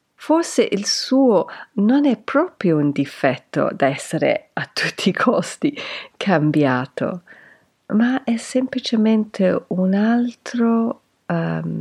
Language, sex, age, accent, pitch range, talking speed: Italian, female, 50-69, native, 145-235 Hz, 95 wpm